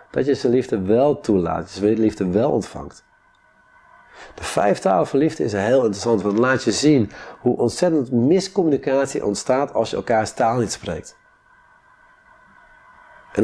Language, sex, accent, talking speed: Dutch, male, Dutch, 160 wpm